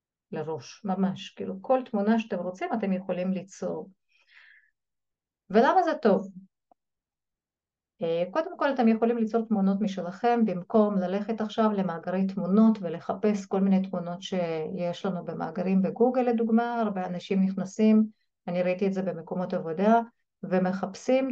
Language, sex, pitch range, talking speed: Hebrew, female, 185-240 Hz, 125 wpm